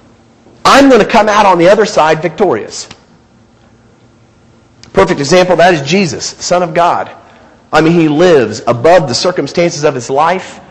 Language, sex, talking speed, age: English, male, 155 wpm, 40-59